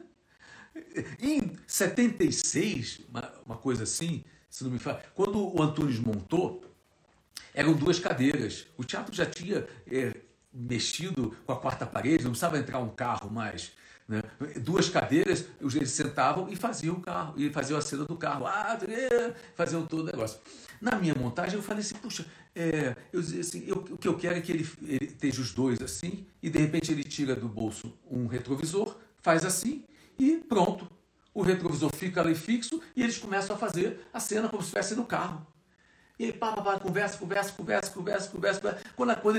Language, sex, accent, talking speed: Portuguese, male, Brazilian, 180 wpm